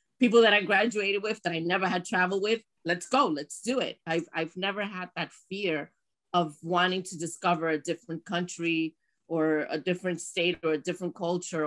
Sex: female